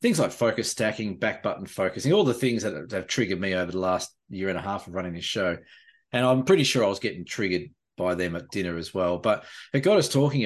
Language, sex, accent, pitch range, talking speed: English, male, Australian, 90-120 Hz, 250 wpm